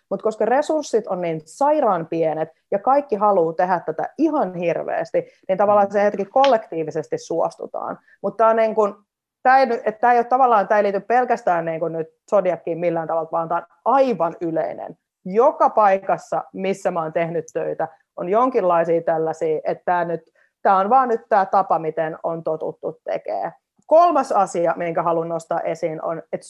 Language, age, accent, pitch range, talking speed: Finnish, 30-49, native, 165-230 Hz, 150 wpm